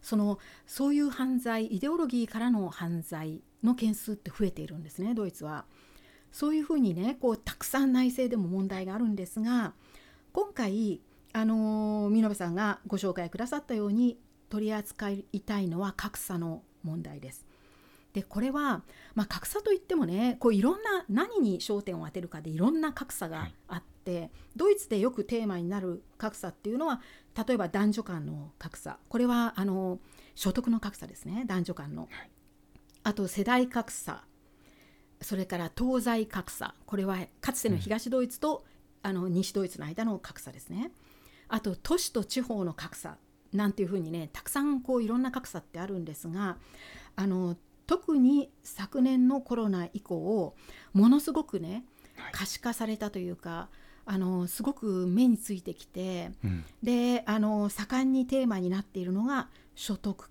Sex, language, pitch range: female, Japanese, 180-245 Hz